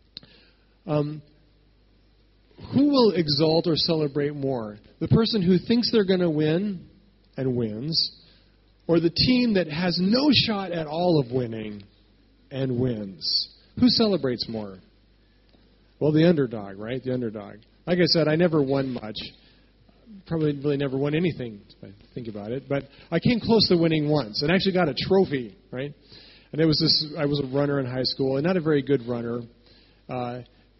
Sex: male